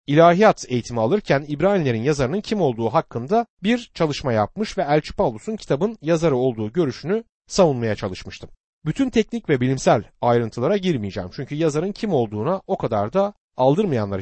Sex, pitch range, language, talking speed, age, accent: male, 120-195 Hz, Turkish, 145 wpm, 40-59, native